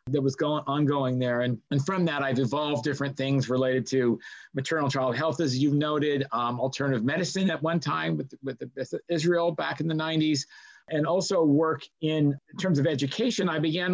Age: 40-59